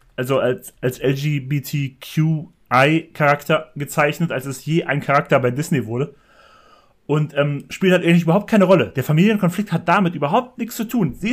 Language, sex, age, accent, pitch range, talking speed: German, male, 30-49, German, 140-170 Hz, 160 wpm